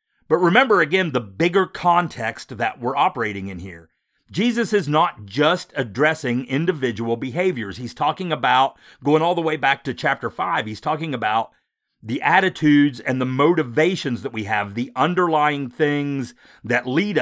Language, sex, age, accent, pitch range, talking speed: English, male, 50-69, American, 115-155 Hz, 155 wpm